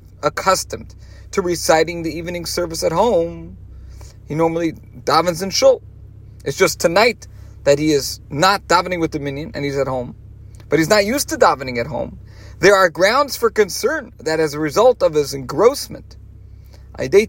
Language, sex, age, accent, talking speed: English, male, 40-59, American, 165 wpm